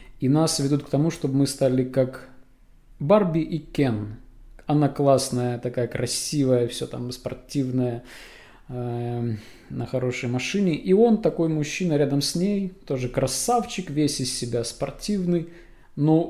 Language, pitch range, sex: Russian, 125-150 Hz, male